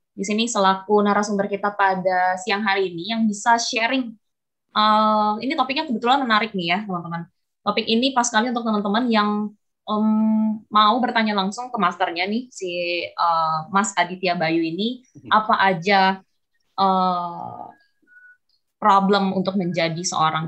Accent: native